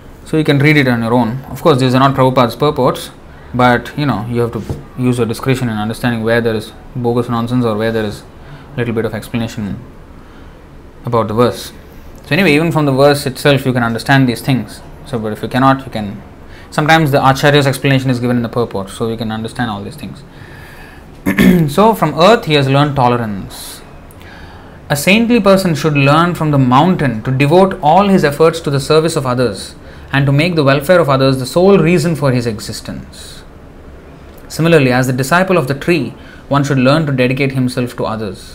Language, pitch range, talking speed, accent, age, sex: English, 110-145 Hz, 200 wpm, Indian, 20-39, male